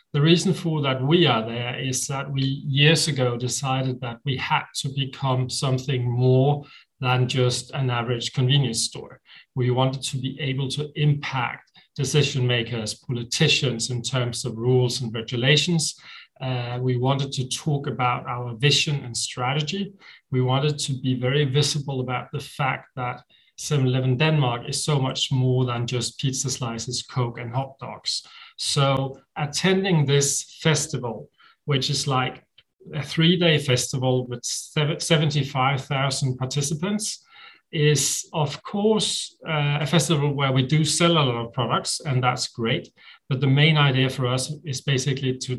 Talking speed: 150 wpm